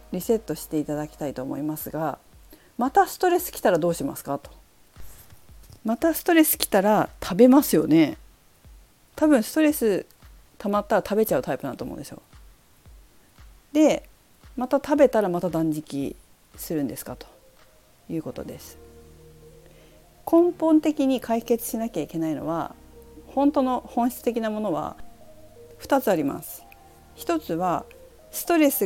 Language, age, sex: Japanese, 40-59, female